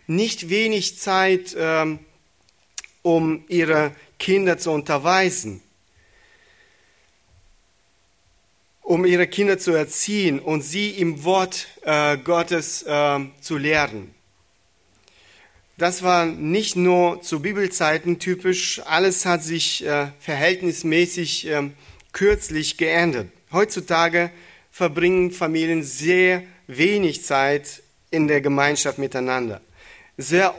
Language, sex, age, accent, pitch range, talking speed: German, male, 40-59, German, 150-180 Hz, 85 wpm